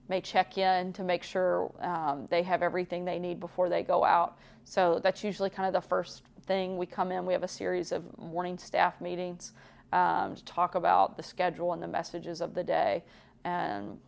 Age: 30-49